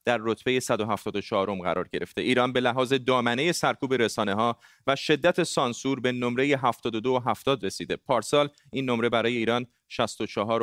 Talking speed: 160 wpm